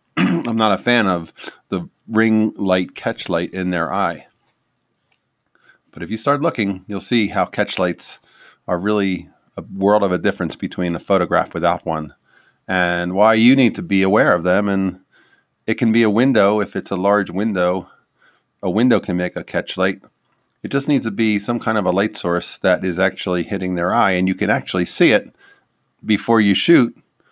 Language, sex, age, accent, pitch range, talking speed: English, male, 30-49, American, 95-120 Hz, 190 wpm